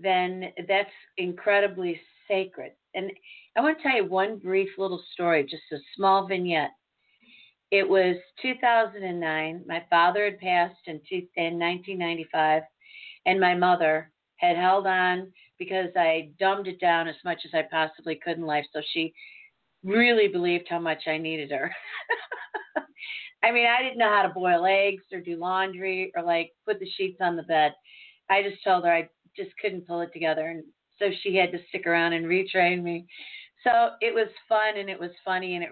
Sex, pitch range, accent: female, 170-200 Hz, American